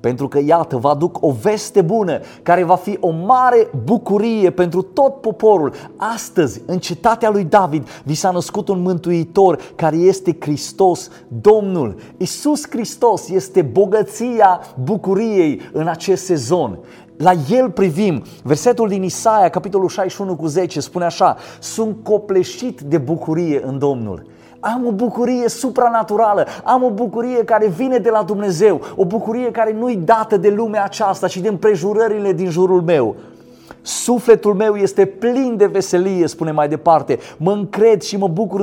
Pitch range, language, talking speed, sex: 155-210 Hz, Romanian, 150 wpm, male